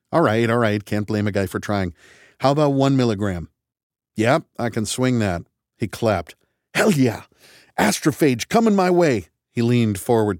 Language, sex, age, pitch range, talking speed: English, male, 50-69, 120-185 Hz, 180 wpm